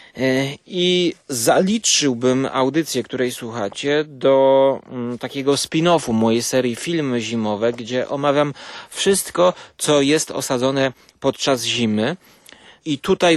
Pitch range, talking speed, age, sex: 120-155 Hz, 100 wpm, 30-49, male